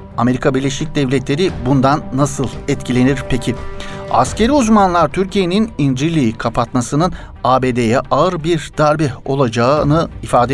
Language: Turkish